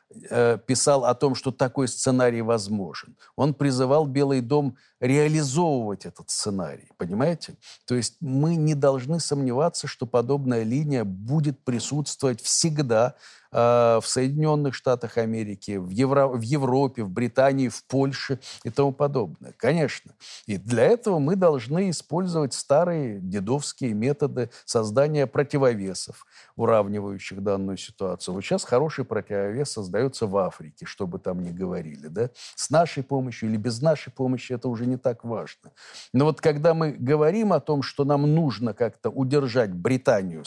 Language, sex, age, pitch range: Russian, male, 50-69, 115-145 Hz